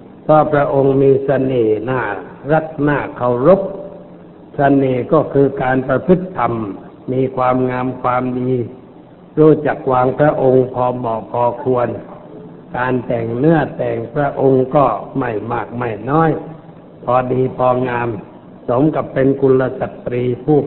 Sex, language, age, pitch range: male, Thai, 60-79, 125-150 Hz